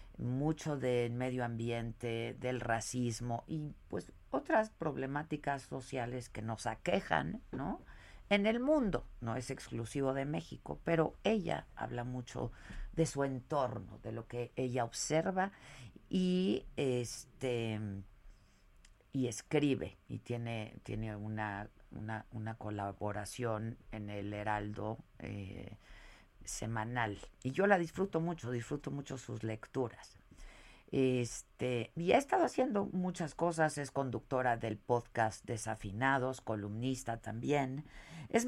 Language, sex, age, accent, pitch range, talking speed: Spanish, female, 50-69, Mexican, 110-145 Hz, 115 wpm